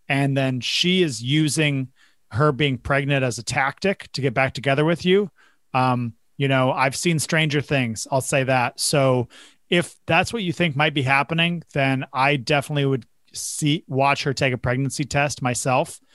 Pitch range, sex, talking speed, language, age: 125-150 Hz, male, 180 wpm, English, 30-49